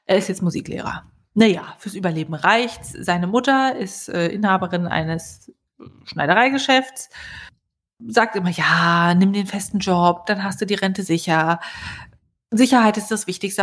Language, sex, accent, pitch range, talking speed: German, female, German, 185-240 Hz, 140 wpm